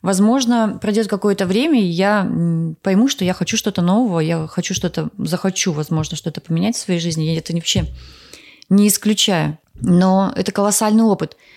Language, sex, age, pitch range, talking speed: Russian, female, 30-49, 165-200 Hz, 170 wpm